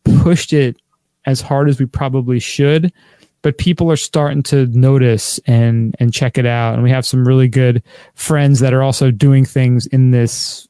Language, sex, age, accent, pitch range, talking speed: English, male, 20-39, American, 125-150 Hz, 185 wpm